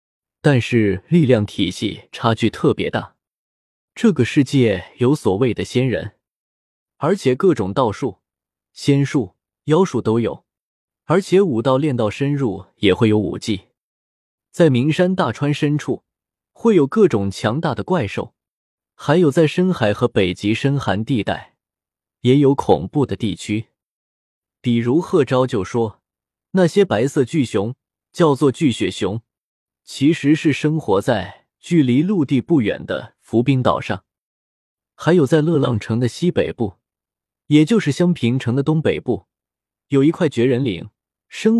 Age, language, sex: 20-39, Chinese, male